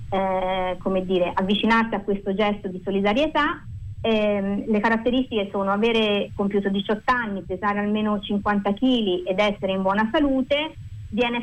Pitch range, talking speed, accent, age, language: 195-235 Hz, 140 wpm, native, 30-49, Italian